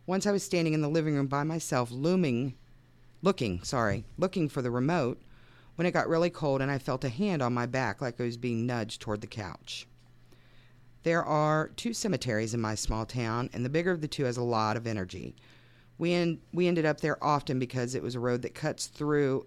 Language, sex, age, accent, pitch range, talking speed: English, female, 40-59, American, 120-160 Hz, 220 wpm